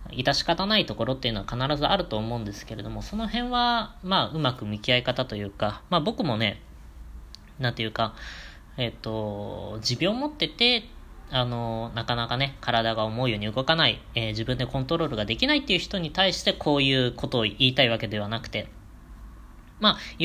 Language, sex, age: Japanese, female, 20-39